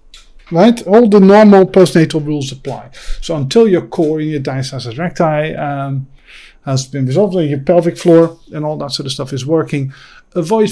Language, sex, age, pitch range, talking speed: English, male, 50-69, 125-155 Hz, 180 wpm